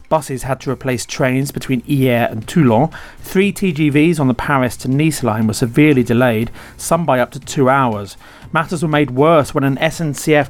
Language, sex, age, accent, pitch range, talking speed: English, male, 30-49, British, 120-150 Hz, 190 wpm